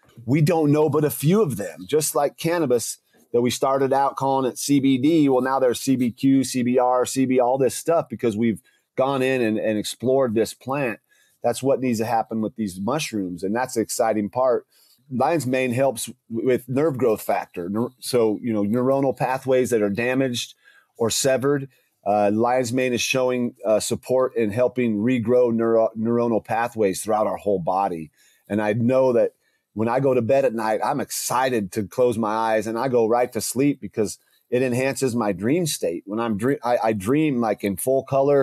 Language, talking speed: English, 190 wpm